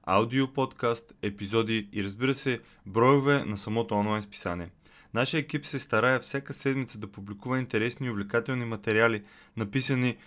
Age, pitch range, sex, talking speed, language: 20-39, 105-130 Hz, male, 140 wpm, Bulgarian